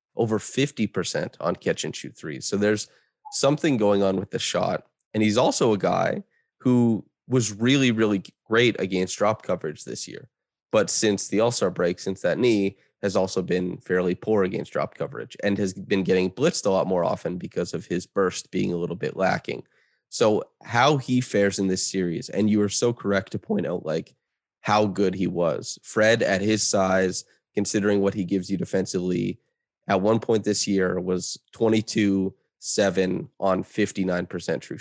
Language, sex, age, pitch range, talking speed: English, male, 20-39, 95-110 Hz, 175 wpm